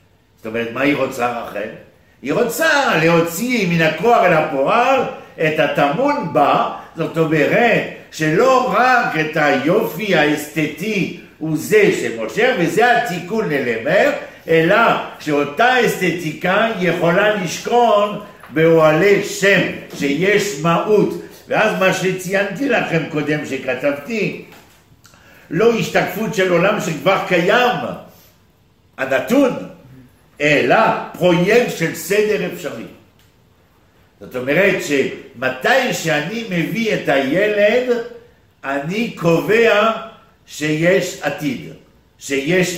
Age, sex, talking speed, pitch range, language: 60-79, male, 95 wpm, 145-210 Hz, Hebrew